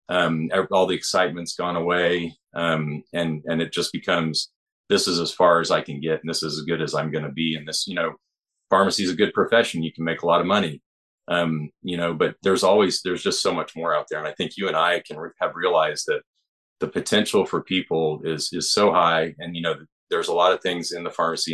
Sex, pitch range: male, 80-95 Hz